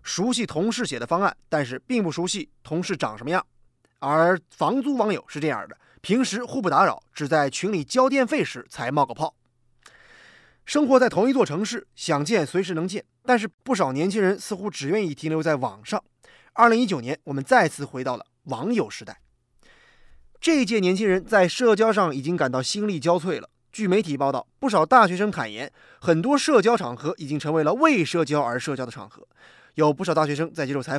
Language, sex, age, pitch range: Chinese, male, 20-39, 150-230 Hz